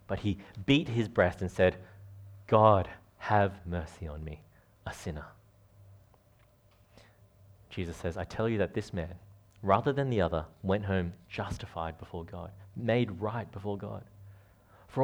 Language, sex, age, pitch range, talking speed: English, male, 30-49, 95-120 Hz, 145 wpm